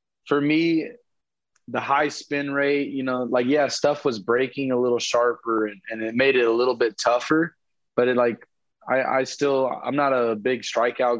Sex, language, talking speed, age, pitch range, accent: male, English, 195 wpm, 20-39, 110-135 Hz, American